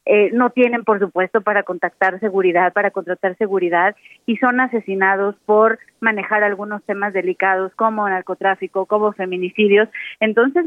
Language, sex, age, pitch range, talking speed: Spanish, female, 30-49, 195-225 Hz, 135 wpm